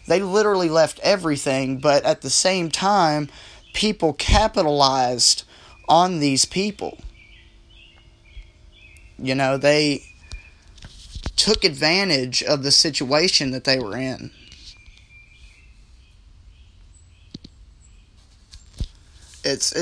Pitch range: 130-170 Hz